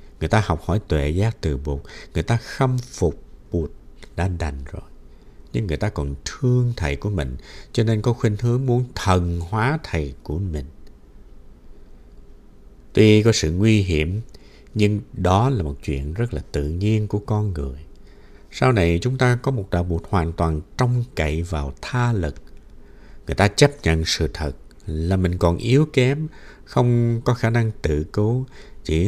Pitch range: 80-115 Hz